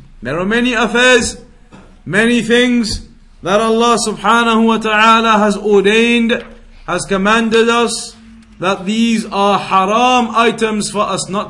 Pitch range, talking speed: 190-225 Hz, 125 wpm